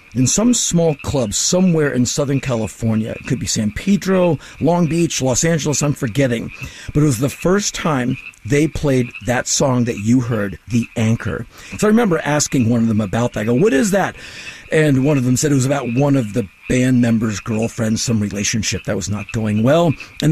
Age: 50-69